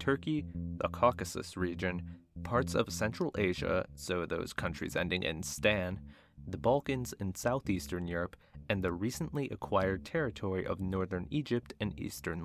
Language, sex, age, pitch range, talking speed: English, male, 30-49, 85-100 Hz, 140 wpm